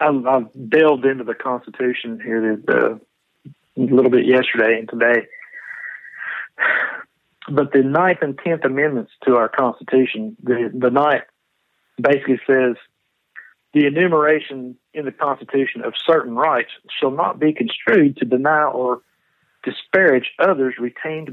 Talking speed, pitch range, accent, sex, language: 125 wpm, 125-150 Hz, American, male, English